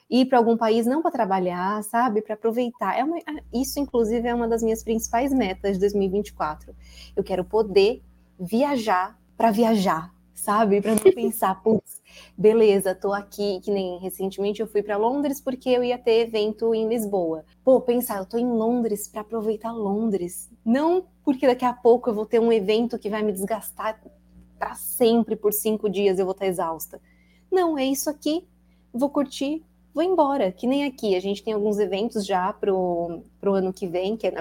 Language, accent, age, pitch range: Portuguese, Brazilian, 20-39, 195-245 Hz